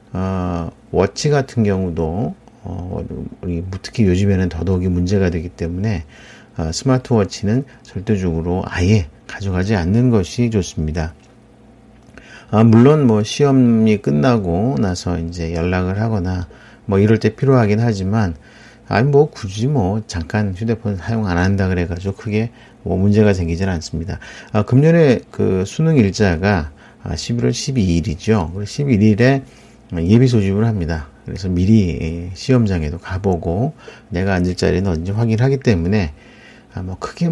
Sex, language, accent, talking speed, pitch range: male, English, Korean, 115 wpm, 90-115 Hz